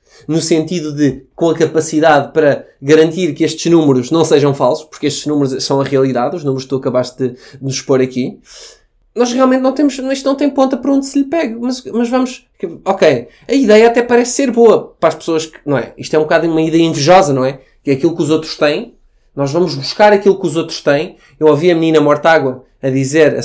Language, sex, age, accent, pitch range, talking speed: Portuguese, male, 20-39, Portuguese, 145-205 Hz, 230 wpm